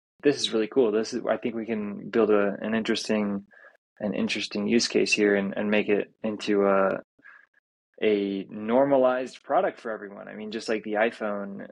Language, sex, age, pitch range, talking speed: English, male, 20-39, 105-120 Hz, 185 wpm